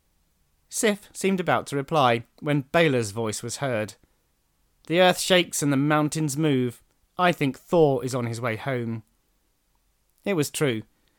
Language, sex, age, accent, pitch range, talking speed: English, male, 30-49, British, 125-170 Hz, 150 wpm